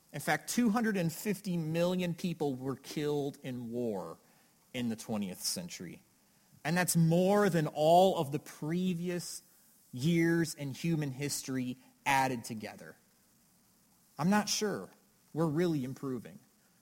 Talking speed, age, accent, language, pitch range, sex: 120 wpm, 30-49, American, English, 155-205 Hz, male